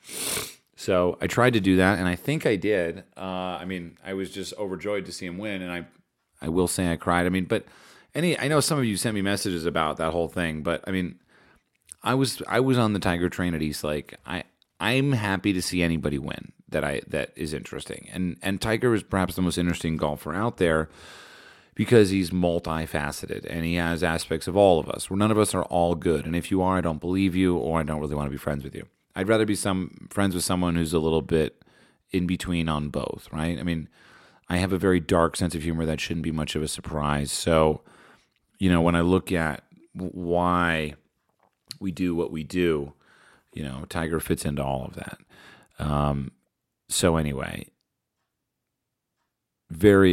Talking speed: 210 wpm